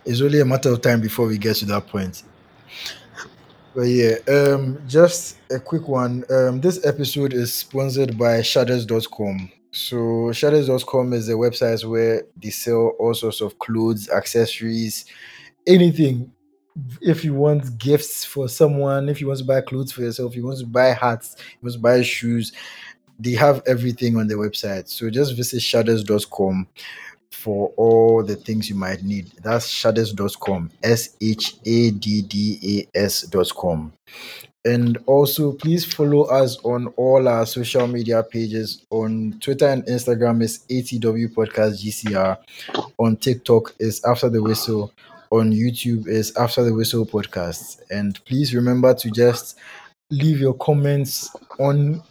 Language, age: English, 20-39